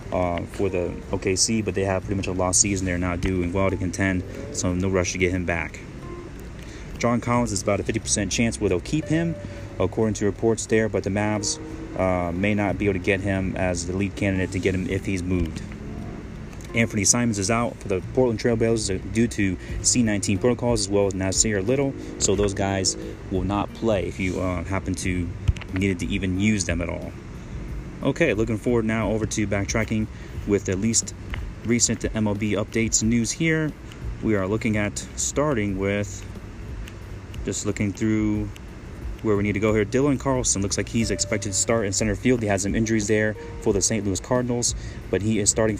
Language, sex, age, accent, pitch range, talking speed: English, male, 30-49, American, 95-110 Hz, 200 wpm